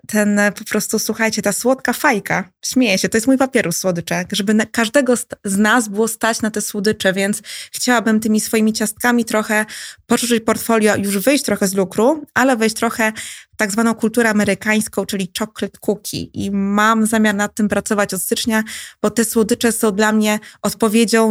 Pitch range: 210-235 Hz